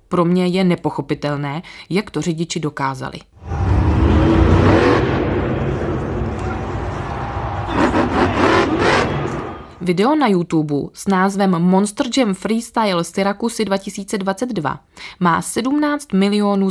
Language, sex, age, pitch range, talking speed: Czech, female, 20-39, 155-200 Hz, 80 wpm